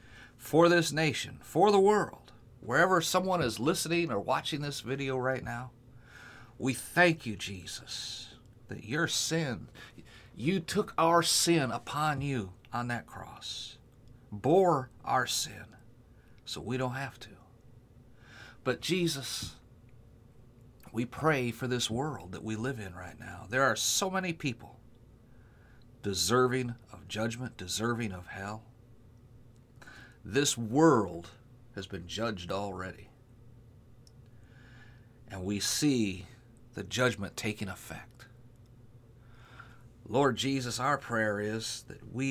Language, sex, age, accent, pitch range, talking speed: English, male, 50-69, American, 115-125 Hz, 120 wpm